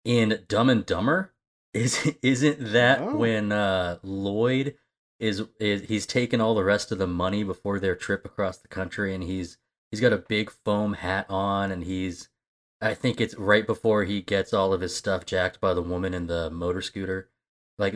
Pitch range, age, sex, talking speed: 95-110 Hz, 20-39, male, 190 wpm